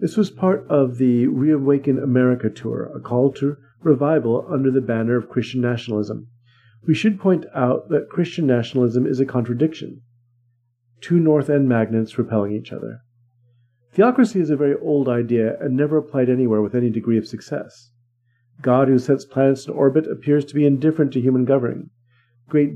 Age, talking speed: 50-69, 170 wpm